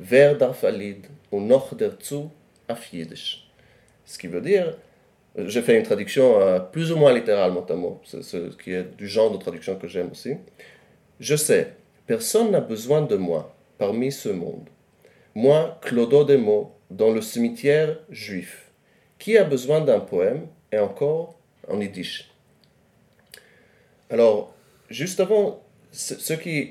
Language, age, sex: French, 30-49, male